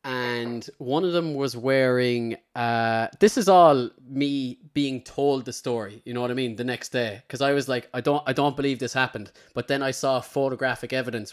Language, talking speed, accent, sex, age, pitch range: English, 210 wpm, Irish, male, 20-39, 120-140 Hz